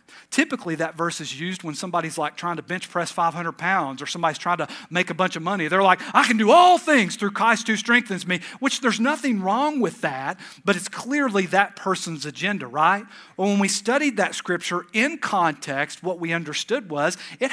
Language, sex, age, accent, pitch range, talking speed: English, male, 40-59, American, 165-220 Hz, 205 wpm